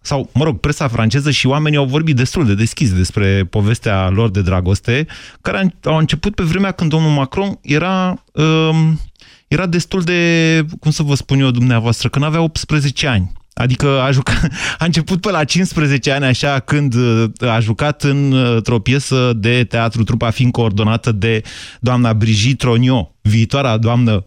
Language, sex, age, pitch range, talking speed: Romanian, male, 30-49, 115-155 Hz, 165 wpm